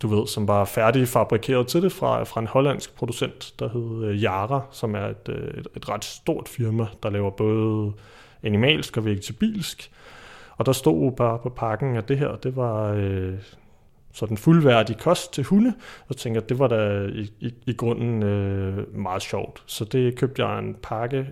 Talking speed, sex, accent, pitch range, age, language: 175 wpm, male, native, 110-130 Hz, 30-49, Danish